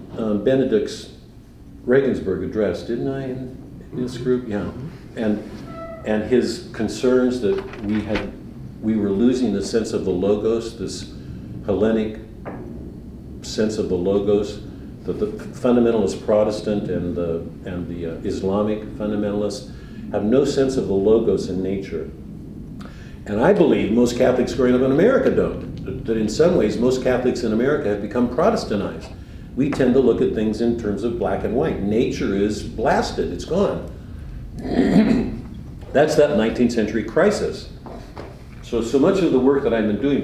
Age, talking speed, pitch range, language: 50-69, 155 wpm, 100-125 Hz, English